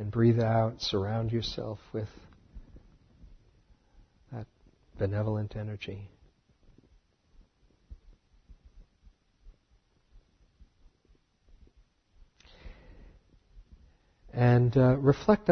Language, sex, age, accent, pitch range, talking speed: English, male, 50-69, American, 85-115 Hz, 45 wpm